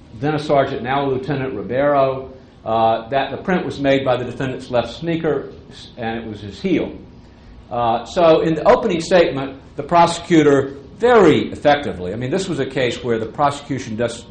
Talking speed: 180 wpm